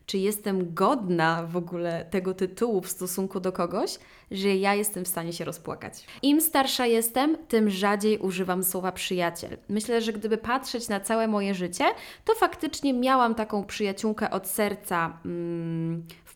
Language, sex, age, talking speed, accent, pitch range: Polish, female, 20-39, 155 wpm, native, 180-235 Hz